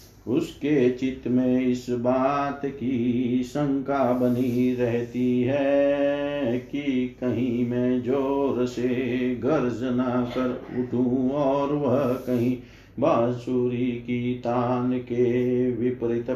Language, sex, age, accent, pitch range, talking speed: Hindi, male, 50-69, native, 120-130 Hz, 95 wpm